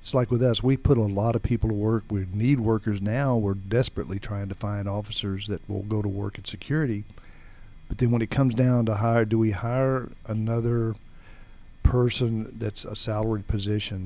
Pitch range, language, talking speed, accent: 100-115 Hz, English, 195 wpm, American